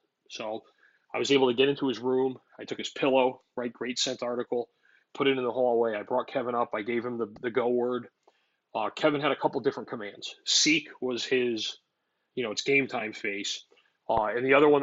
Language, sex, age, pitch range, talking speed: English, male, 30-49, 115-135 Hz, 220 wpm